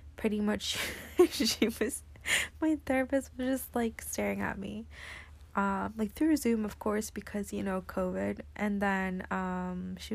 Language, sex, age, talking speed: English, female, 20-39, 155 wpm